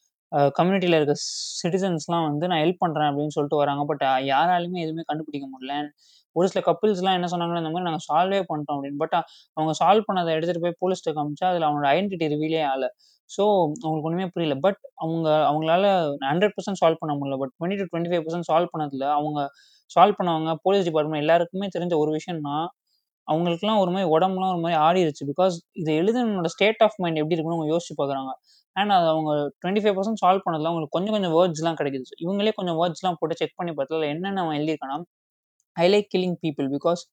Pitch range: 150-180 Hz